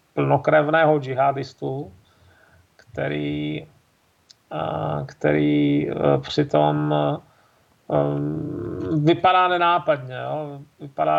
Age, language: 40-59, Czech